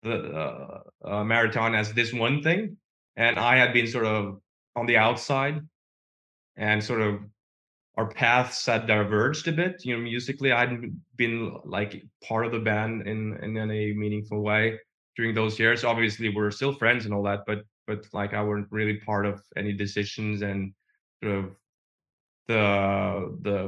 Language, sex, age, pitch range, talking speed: English, male, 20-39, 105-120 Hz, 170 wpm